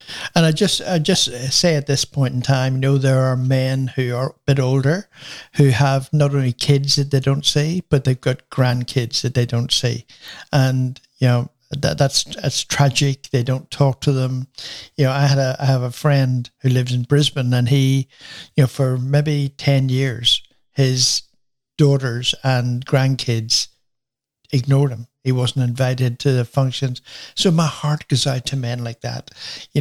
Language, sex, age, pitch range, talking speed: English, male, 60-79, 125-145 Hz, 185 wpm